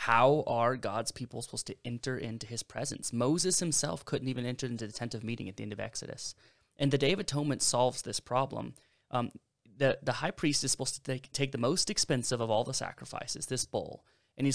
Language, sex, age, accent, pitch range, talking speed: English, male, 20-39, American, 120-145 Hz, 225 wpm